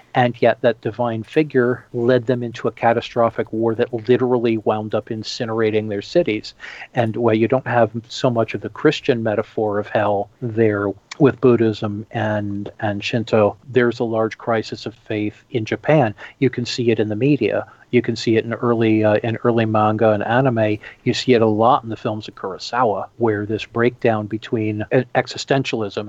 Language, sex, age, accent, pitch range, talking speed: English, male, 50-69, American, 110-125 Hz, 180 wpm